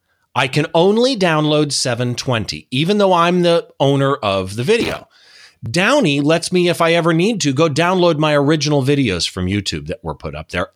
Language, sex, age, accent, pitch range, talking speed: English, male, 40-59, American, 105-175 Hz, 185 wpm